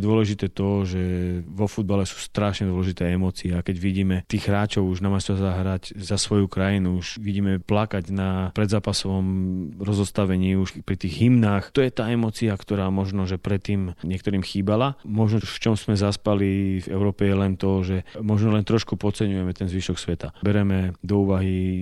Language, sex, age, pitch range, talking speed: Slovak, male, 30-49, 95-105 Hz, 170 wpm